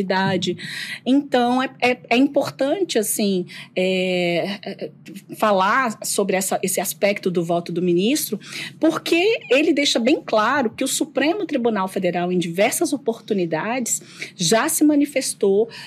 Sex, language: female, Portuguese